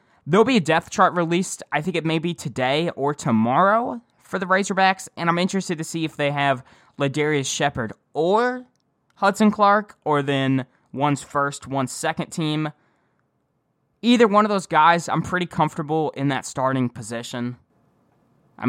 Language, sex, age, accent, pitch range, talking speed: English, male, 10-29, American, 130-175 Hz, 160 wpm